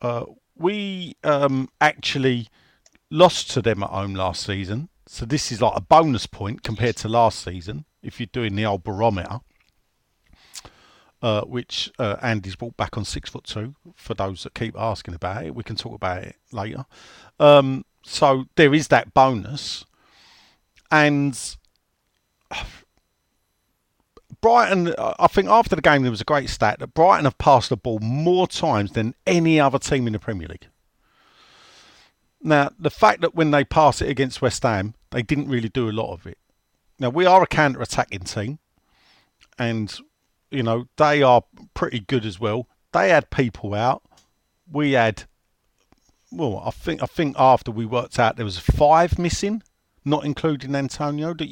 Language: English